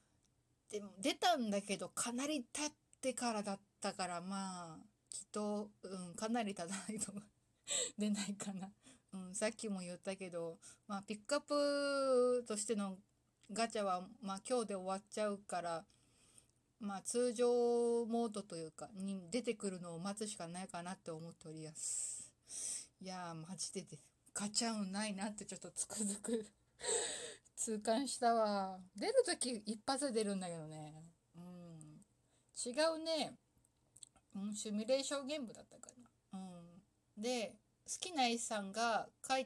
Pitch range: 180-240 Hz